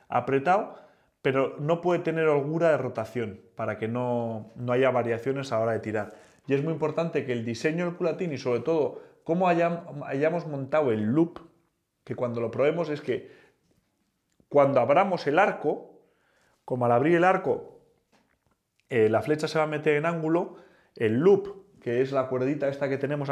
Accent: Spanish